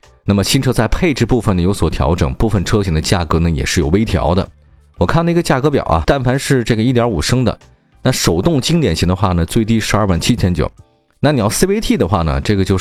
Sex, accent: male, native